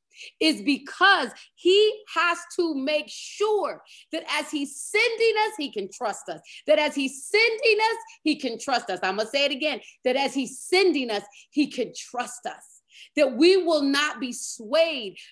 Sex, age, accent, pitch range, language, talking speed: female, 30-49, American, 255-360 Hz, English, 175 wpm